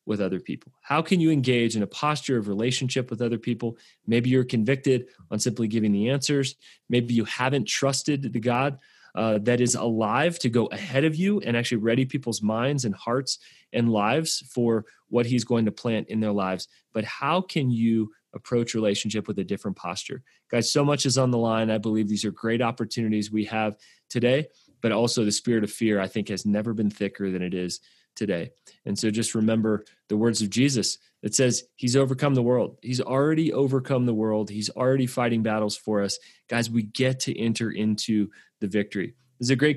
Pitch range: 110-130 Hz